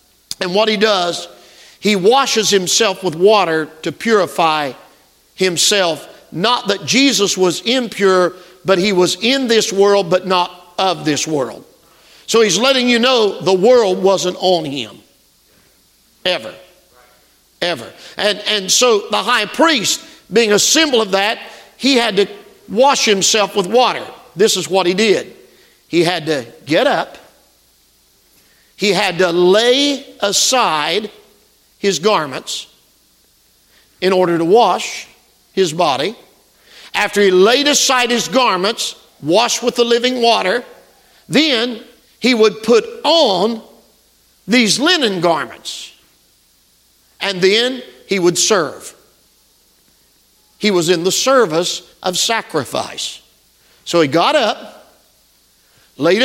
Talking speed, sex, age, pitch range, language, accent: 125 wpm, male, 50-69, 185-240 Hz, English, American